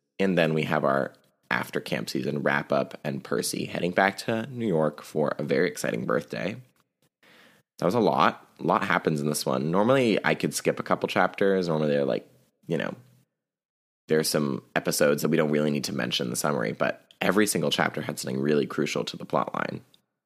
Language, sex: English, male